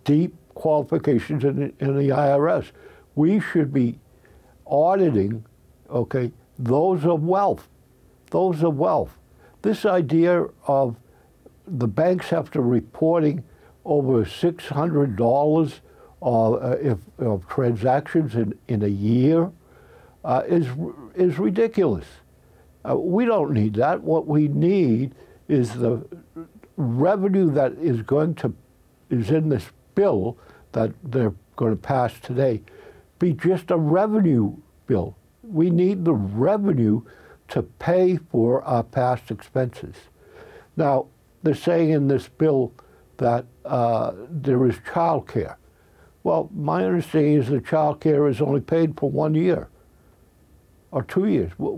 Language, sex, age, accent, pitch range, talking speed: English, male, 60-79, American, 120-165 Hz, 125 wpm